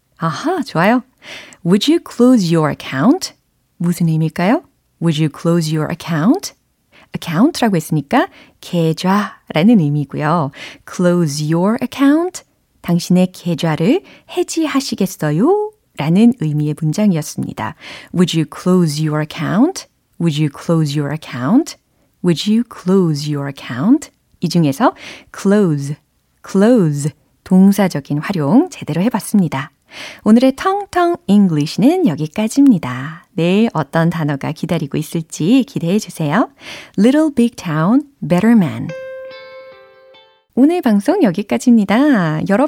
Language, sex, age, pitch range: Korean, female, 30-49, 160-255 Hz